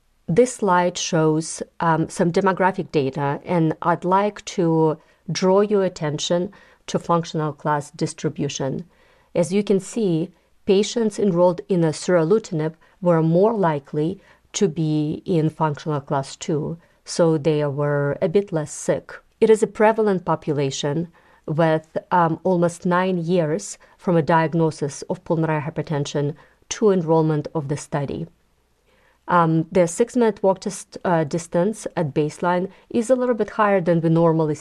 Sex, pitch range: female, 155-190 Hz